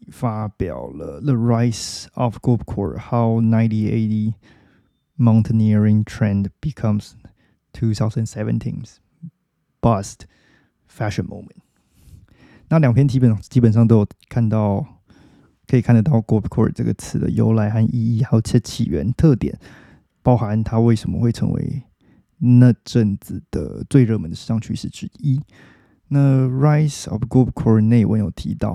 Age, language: 20-39, Chinese